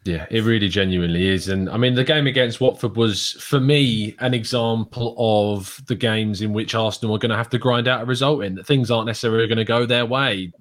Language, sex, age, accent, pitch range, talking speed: English, male, 20-39, British, 105-130 Hz, 240 wpm